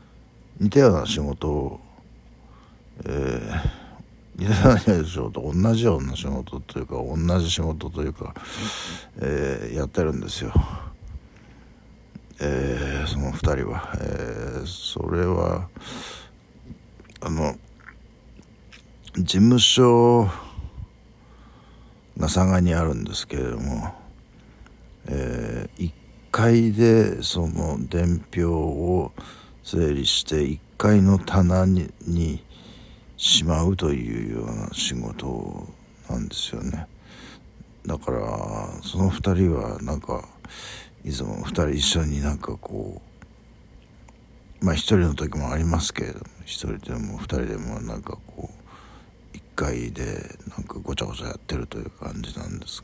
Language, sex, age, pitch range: Japanese, male, 60-79, 75-100 Hz